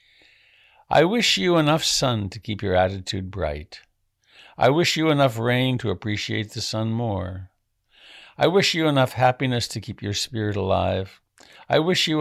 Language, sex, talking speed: English, male, 160 wpm